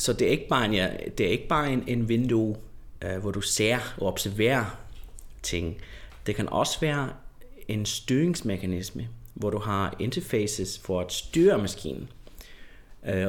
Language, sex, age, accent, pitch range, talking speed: Danish, male, 30-49, native, 100-120 Hz, 165 wpm